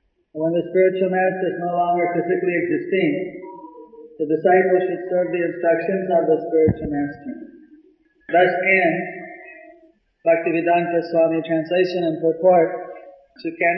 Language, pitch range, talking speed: English, 165-185 Hz, 120 wpm